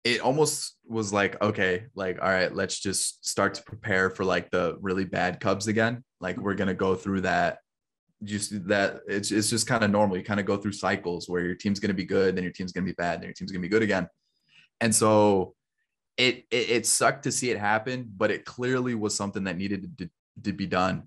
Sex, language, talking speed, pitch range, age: male, English, 230 wpm, 95-110 Hz, 20-39